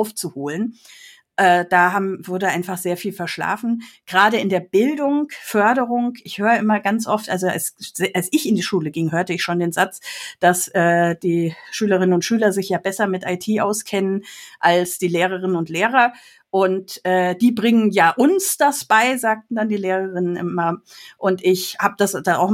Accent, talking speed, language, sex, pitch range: German, 180 wpm, German, female, 180-215 Hz